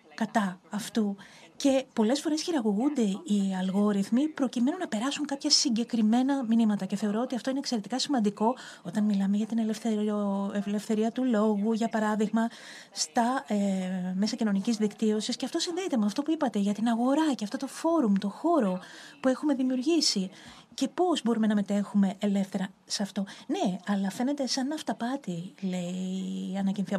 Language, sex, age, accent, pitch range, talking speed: Greek, female, 30-49, native, 200-270 Hz, 155 wpm